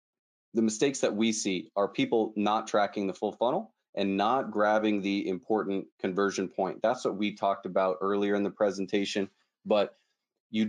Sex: male